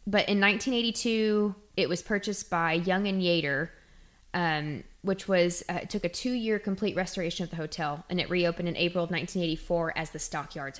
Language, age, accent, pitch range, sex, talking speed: English, 20-39, American, 165-200 Hz, female, 180 wpm